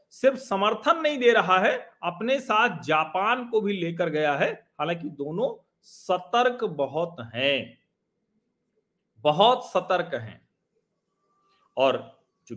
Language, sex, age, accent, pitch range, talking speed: Hindi, male, 40-59, native, 150-215 Hz, 120 wpm